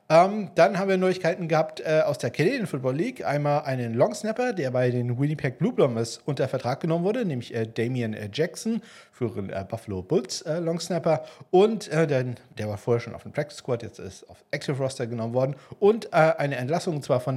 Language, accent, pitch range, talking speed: German, German, 120-155 Hz, 215 wpm